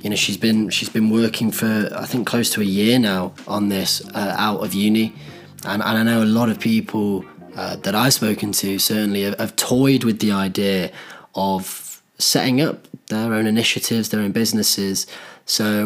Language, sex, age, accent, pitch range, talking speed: English, male, 20-39, British, 105-115 Hz, 195 wpm